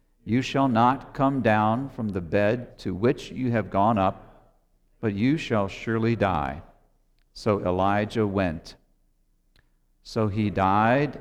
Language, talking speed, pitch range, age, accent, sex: English, 135 wpm, 95-125 Hz, 50-69, American, male